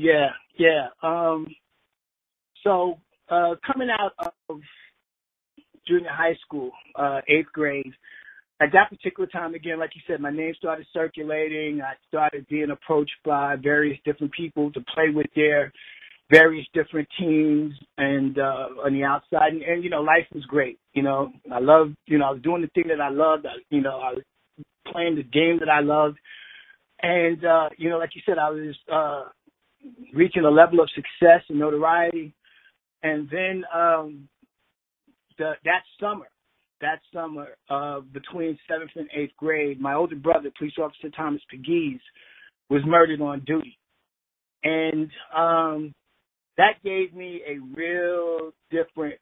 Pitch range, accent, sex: 145-170 Hz, American, male